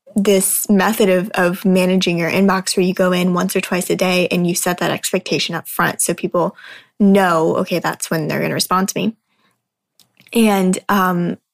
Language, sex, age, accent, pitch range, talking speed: English, female, 10-29, American, 180-210 Hz, 190 wpm